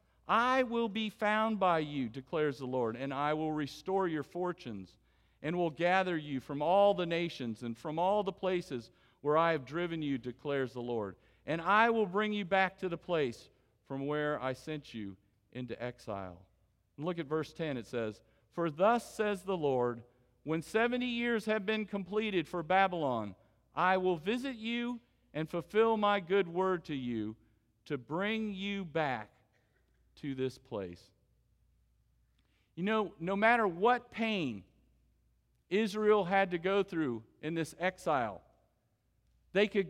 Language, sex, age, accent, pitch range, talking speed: English, male, 50-69, American, 130-205 Hz, 160 wpm